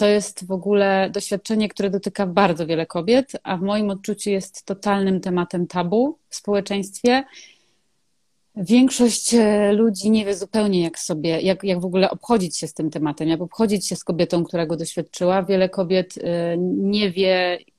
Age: 30-49